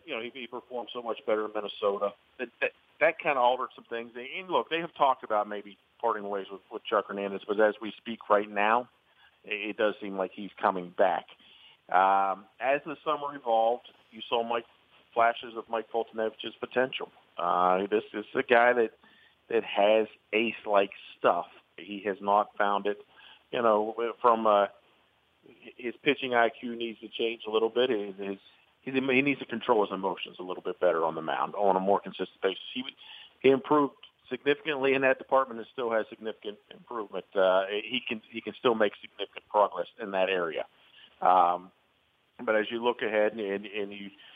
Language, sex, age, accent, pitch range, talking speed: English, male, 40-59, American, 100-115 Hz, 190 wpm